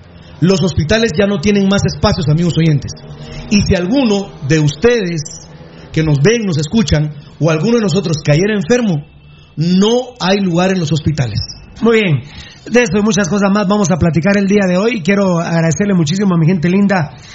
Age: 40-59